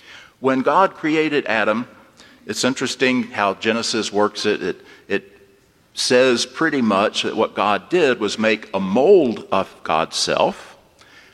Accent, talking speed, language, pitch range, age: American, 140 wpm, English, 100-125 Hz, 50-69